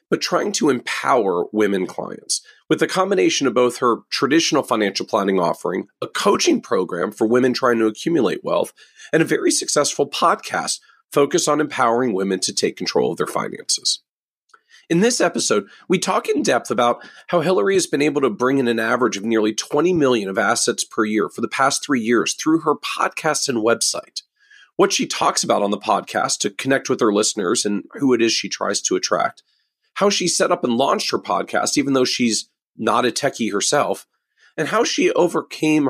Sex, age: male, 40-59